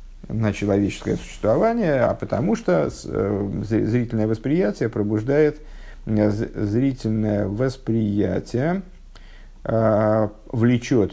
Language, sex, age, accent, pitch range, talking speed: Russian, male, 50-69, native, 105-130 Hz, 65 wpm